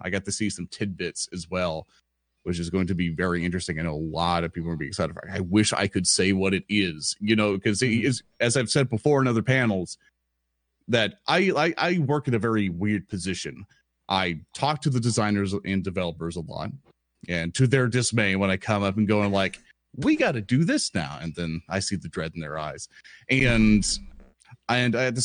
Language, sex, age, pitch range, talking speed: English, male, 30-49, 90-130 Hz, 230 wpm